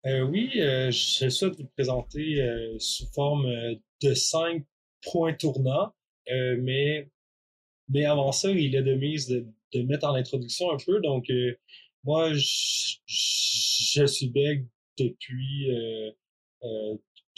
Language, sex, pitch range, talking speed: French, male, 125-155 Hz, 140 wpm